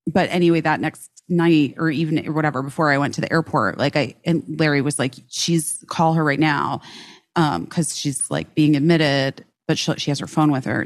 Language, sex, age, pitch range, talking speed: English, female, 30-49, 140-170 Hz, 220 wpm